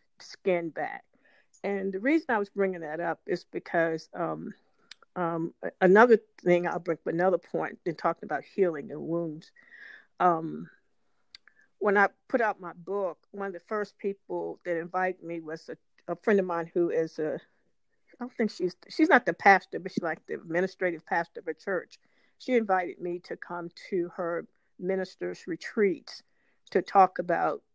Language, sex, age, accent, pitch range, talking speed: English, female, 50-69, American, 175-210 Hz, 175 wpm